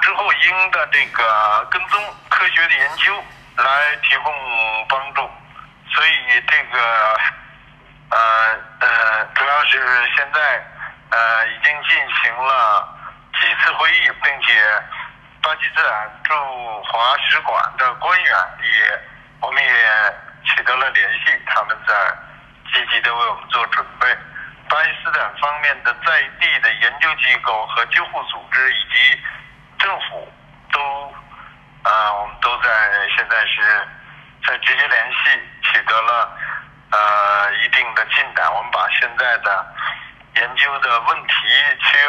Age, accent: 50-69, native